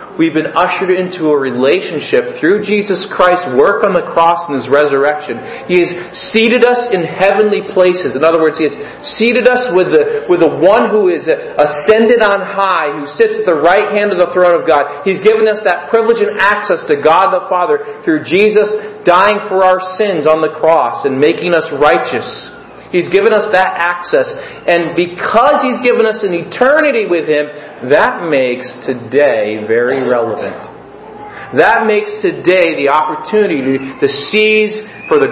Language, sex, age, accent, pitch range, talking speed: English, male, 40-59, American, 160-235 Hz, 175 wpm